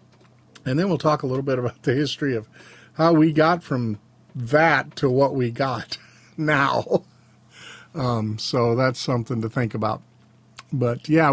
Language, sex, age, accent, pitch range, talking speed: English, male, 50-69, American, 120-160 Hz, 160 wpm